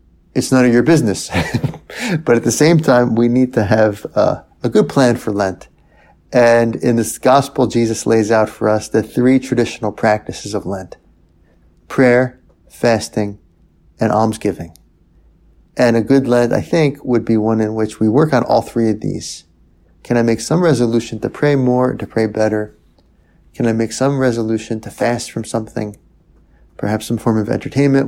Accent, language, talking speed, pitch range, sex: American, English, 175 wpm, 100-120 Hz, male